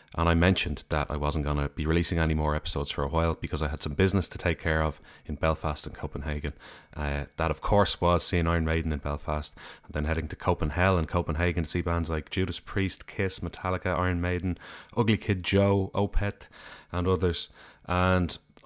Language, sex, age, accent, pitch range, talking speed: English, male, 30-49, Irish, 80-95 Hz, 205 wpm